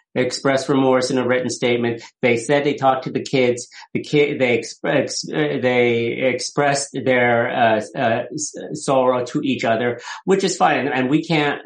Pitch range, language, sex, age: 135-185 Hz, English, male, 50-69